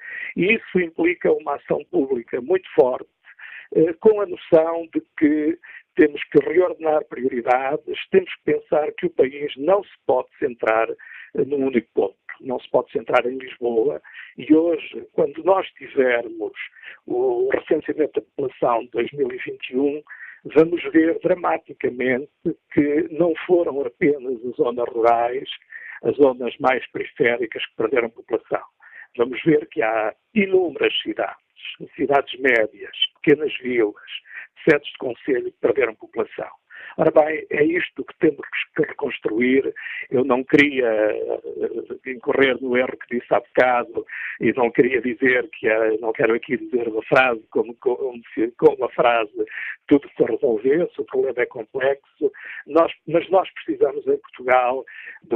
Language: Portuguese